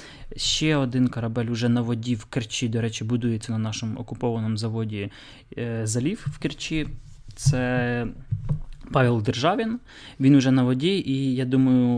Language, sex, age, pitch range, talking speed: Ukrainian, male, 20-39, 120-140 Hz, 140 wpm